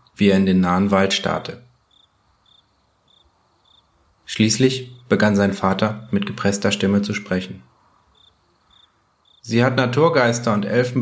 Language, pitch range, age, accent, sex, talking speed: German, 95-125 Hz, 30-49, German, male, 115 wpm